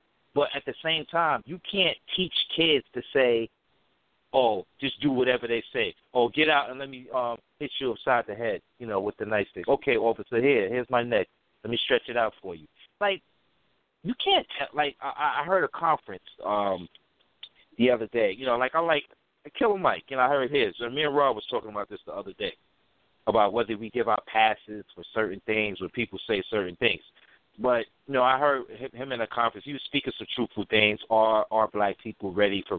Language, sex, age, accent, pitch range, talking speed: English, male, 30-49, American, 105-140 Hz, 220 wpm